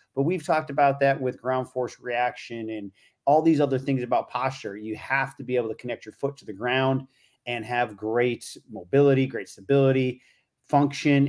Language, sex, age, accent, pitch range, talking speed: English, male, 30-49, American, 120-140 Hz, 185 wpm